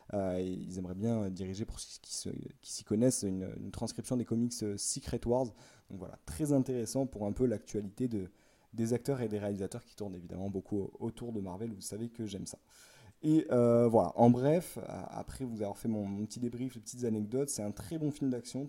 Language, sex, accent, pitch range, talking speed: French, male, French, 105-125 Hz, 215 wpm